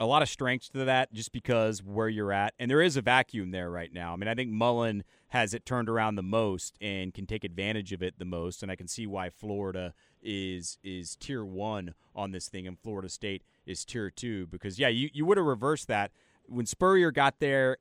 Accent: American